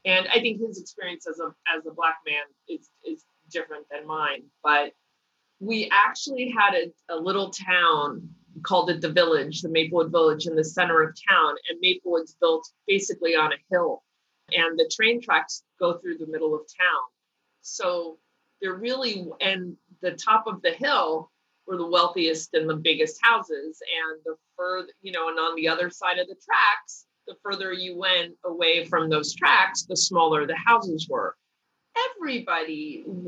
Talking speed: 175 wpm